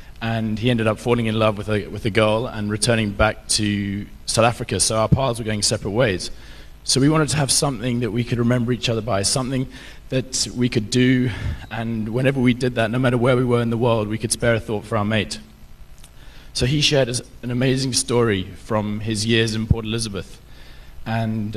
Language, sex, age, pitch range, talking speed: English, male, 20-39, 105-125 Hz, 215 wpm